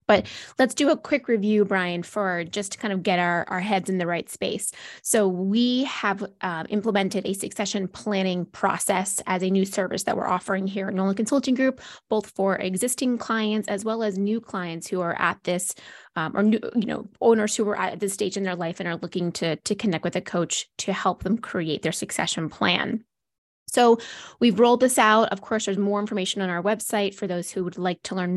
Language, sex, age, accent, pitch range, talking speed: English, female, 20-39, American, 180-225 Hz, 220 wpm